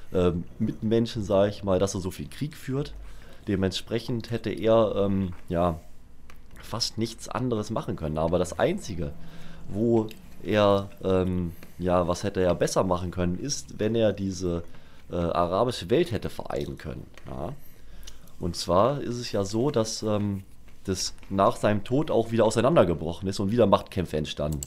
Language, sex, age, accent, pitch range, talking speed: German, male, 30-49, German, 85-110 Hz, 160 wpm